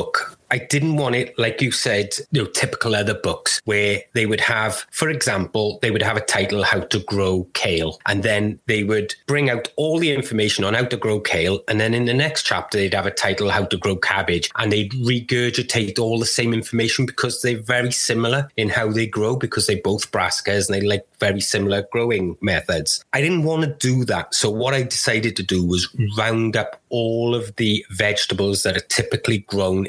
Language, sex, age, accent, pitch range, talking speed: English, male, 30-49, British, 100-125 Hz, 210 wpm